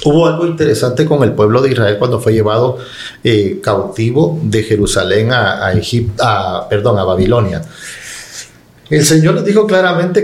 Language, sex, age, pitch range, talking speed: Spanish, male, 40-59, 110-150 Hz, 150 wpm